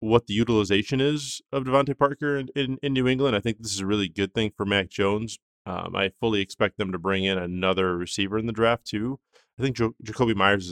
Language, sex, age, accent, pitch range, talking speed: English, male, 20-39, American, 95-120 Hz, 240 wpm